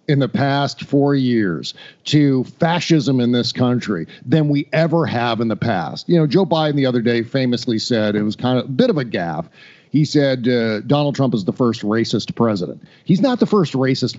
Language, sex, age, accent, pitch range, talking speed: English, male, 50-69, American, 125-165 Hz, 210 wpm